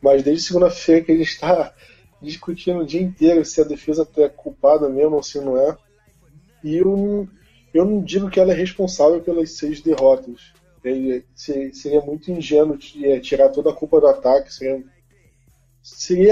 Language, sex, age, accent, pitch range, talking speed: Portuguese, male, 20-39, Brazilian, 145-175 Hz, 160 wpm